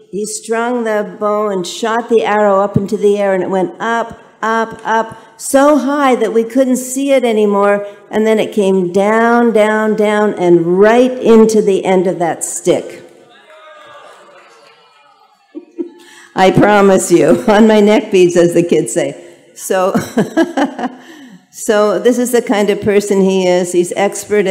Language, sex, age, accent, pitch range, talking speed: English, female, 50-69, American, 175-210 Hz, 155 wpm